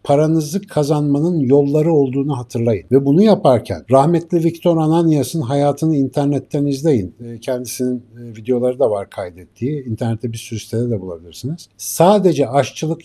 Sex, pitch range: male, 115-150 Hz